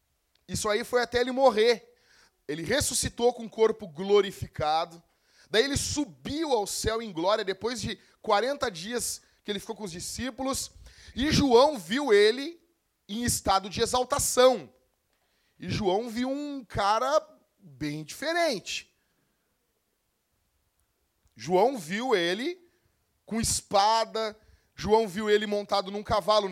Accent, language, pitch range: Brazilian, Portuguese, 190-245 Hz